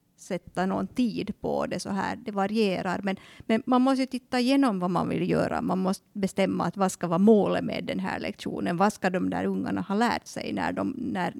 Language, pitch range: Swedish, 185-225 Hz